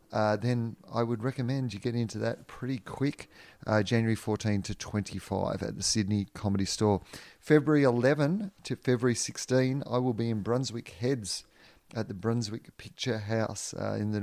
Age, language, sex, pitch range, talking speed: 30-49, English, male, 105-130 Hz, 170 wpm